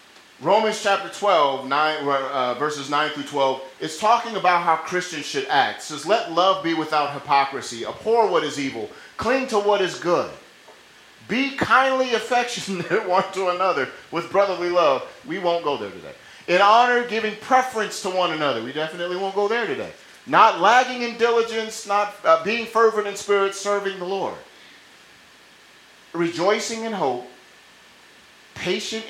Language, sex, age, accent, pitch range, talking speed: English, male, 40-59, American, 155-215 Hz, 155 wpm